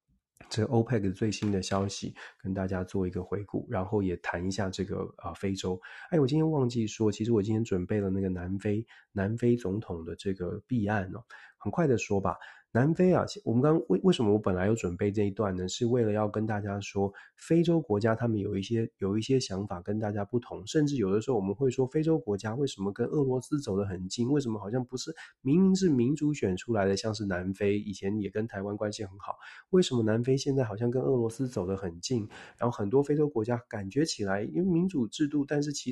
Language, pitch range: Chinese, 100-135 Hz